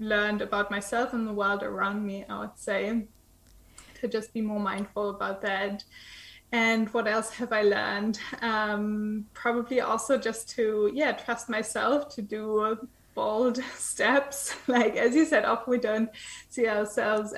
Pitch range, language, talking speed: 210-240 Hz, English, 155 wpm